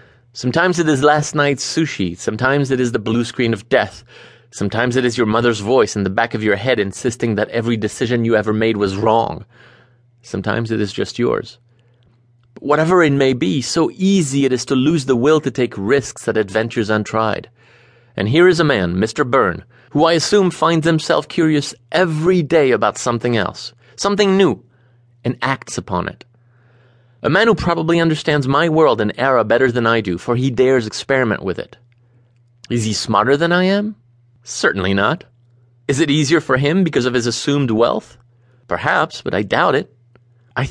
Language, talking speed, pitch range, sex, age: English, 185 wpm, 120-155 Hz, male, 30-49